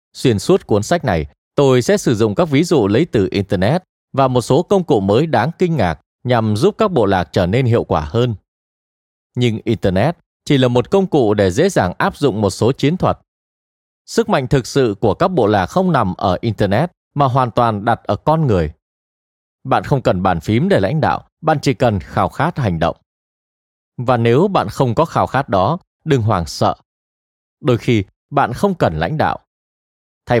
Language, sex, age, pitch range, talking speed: Vietnamese, male, 20-39, 100-155 Hz, 205 wpm